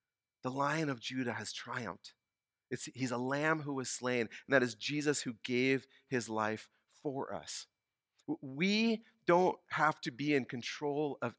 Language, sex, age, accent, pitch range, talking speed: English, male, 40-59, American, 115-150 Hz, 160 wpm